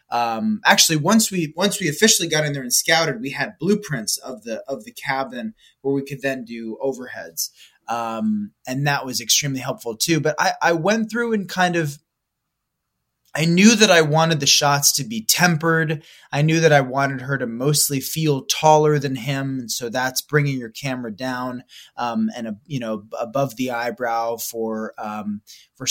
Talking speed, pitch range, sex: 185 wpm, 120-160 Hz, male